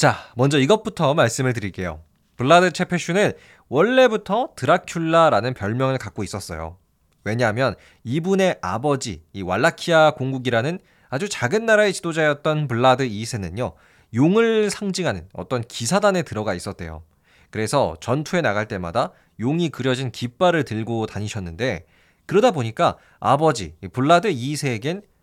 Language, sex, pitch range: Korean, male, 105-170 Hz